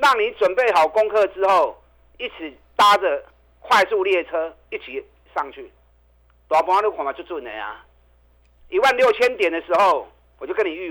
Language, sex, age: Chinese, male, 50-69